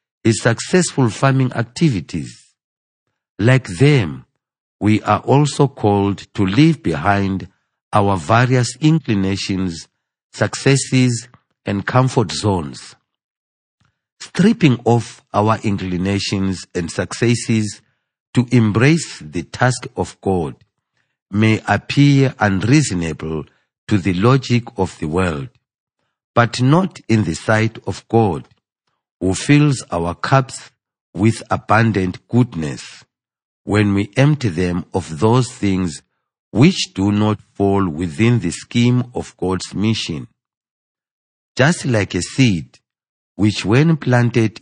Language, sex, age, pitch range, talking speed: English, male, 50-69, 95-125 Hz, 105 wpm